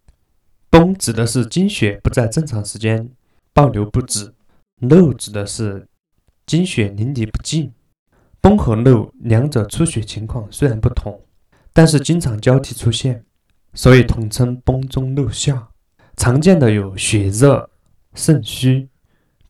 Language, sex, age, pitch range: Chinese, male, 20-39, 105-140 Hz